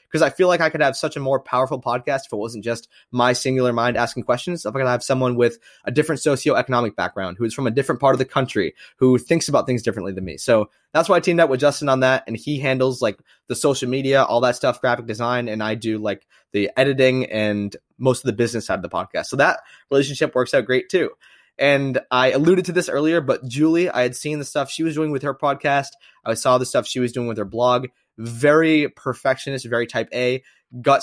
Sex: male